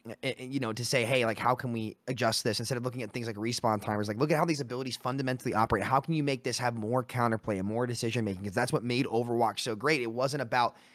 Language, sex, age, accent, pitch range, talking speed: English, male, 20-39, American, 115-140 Hz, 270 wpm